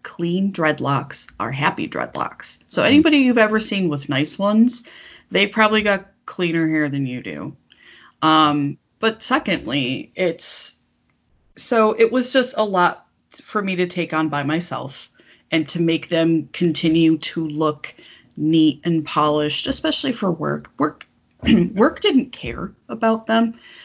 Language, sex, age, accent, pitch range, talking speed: English, female, 30-49, American, 145-200 Hz, 145 wpm